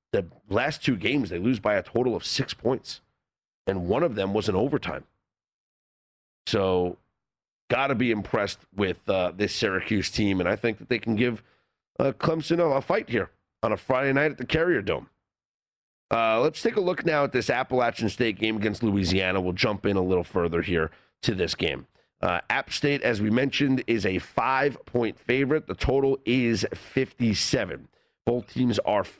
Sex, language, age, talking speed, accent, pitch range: male, English, 40-59, 185 wpm, American, 105-135 Hz